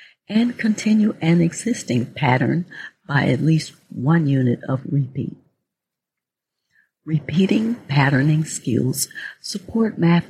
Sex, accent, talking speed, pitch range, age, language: female, American, 100 wpm, 130-180 Hz, 60-79, English